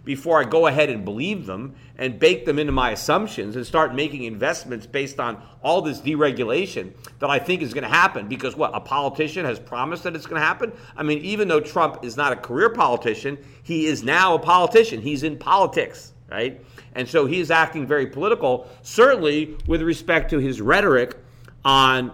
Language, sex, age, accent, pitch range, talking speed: English, male, 40-59, American, 125-160 Hz, 190 wpm